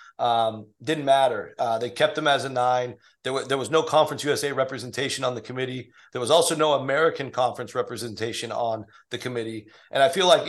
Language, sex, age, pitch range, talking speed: English, male, 30-49, 125-150 Hz, 195 wpm